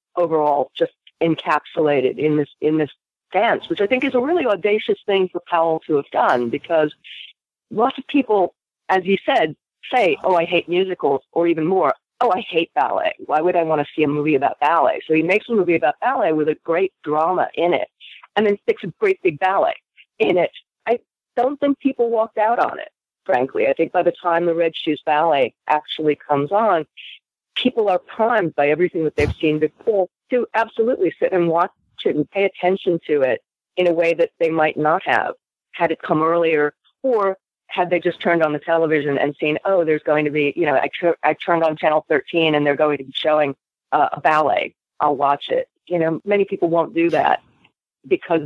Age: 40-59